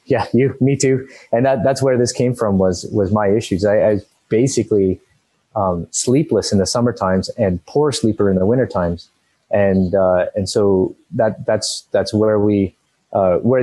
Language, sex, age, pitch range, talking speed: English, male, 30-49, 95-120 Hz, 180 wpm